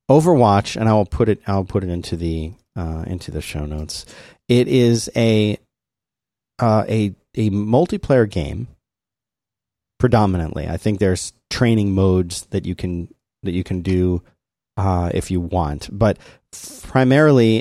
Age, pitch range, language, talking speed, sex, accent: 30-49, 95-120 Hz, English, 145 wpm, male, American